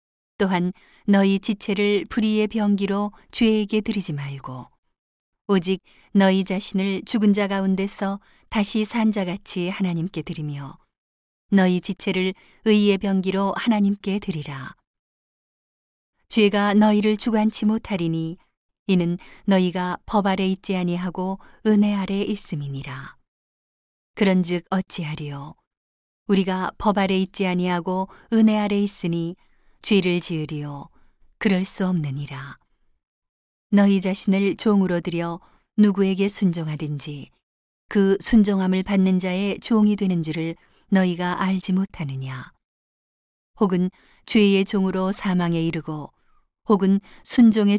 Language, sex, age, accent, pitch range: Korean, female, 40-59, native, 170-205 Hz